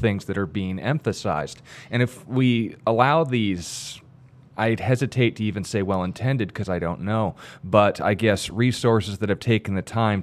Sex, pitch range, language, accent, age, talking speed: male, 95-120 Hz, English, American, 30-49, 170 wpm